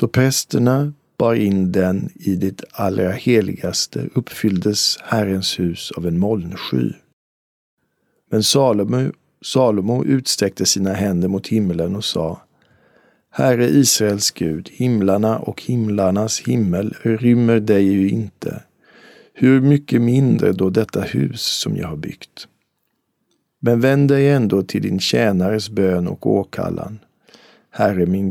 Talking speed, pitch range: 125 wpm, 95-120 Hz